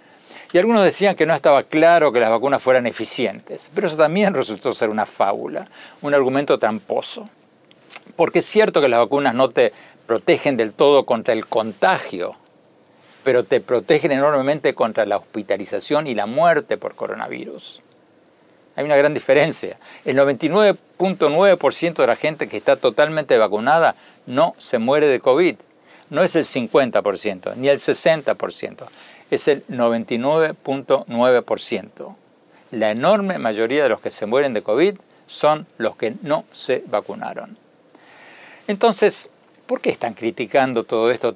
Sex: male